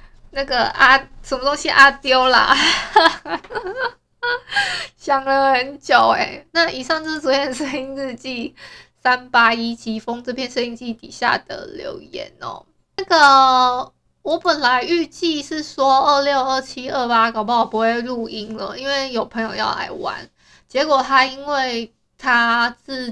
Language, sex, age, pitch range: Chinese, female, 20-39, 225-280 Hz